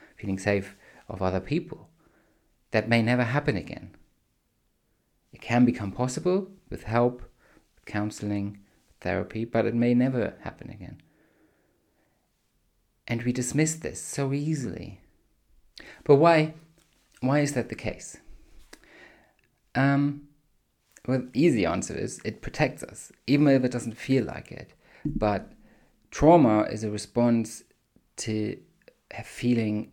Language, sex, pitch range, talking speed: English, male, 100-130 Hz, 120 wpm